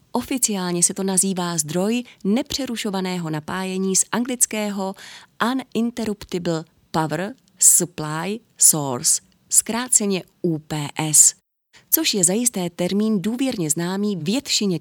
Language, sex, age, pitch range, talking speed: Czech, female, 30-49, 160-215 Hz, 95 wpm